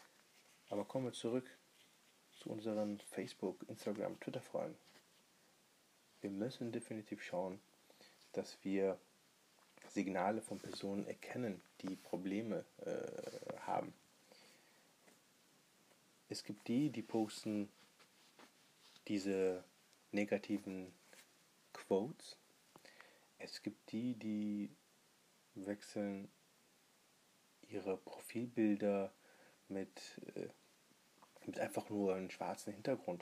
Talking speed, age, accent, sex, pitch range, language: 85 wpm, 30-49, German, male, 100-110 Hz, German